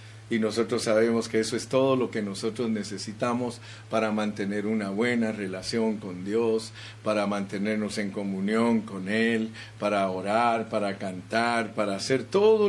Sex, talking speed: male, 145 wpm